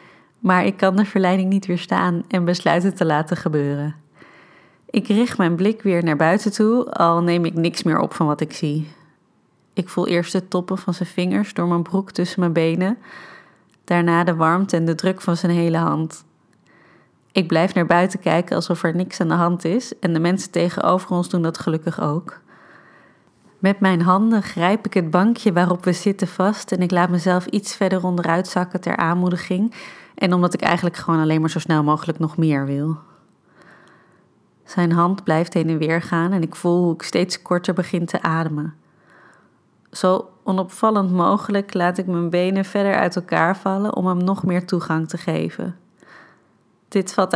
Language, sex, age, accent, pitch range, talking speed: Dutch, female, 30-49, Dutch, 165-190 Hz, 185 wpm